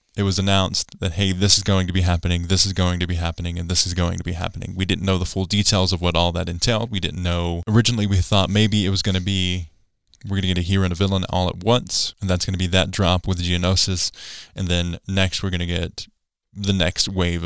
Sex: male